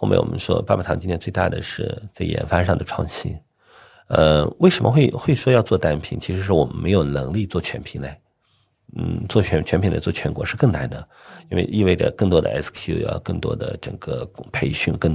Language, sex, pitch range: Chinese, male, 80-110 Hz